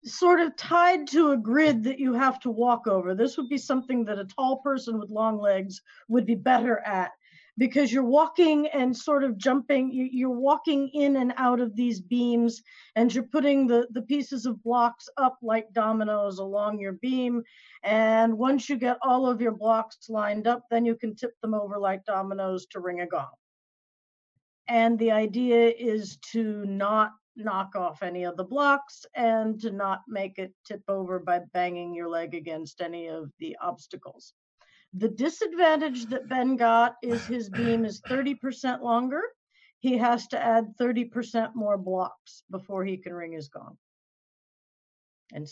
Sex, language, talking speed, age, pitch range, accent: female, English, 175 wpm, 40-59, 205-255 Hz, American